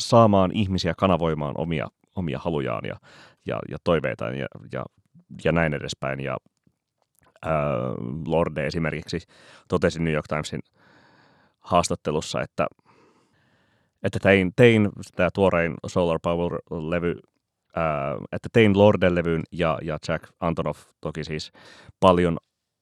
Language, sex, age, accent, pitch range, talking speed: Finnish, male, 30-49, native, 75-90 Hz, 115 wpm